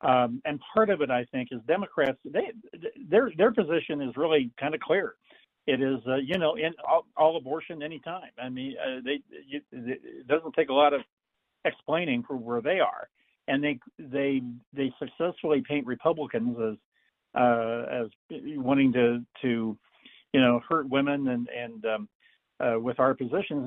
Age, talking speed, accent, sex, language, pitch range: 60-79, 170 wpm, American, male, English, 125-150 Hz